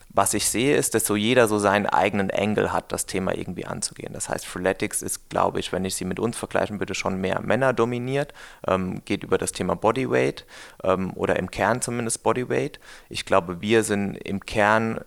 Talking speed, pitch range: 205 wpm, 95-115 Hz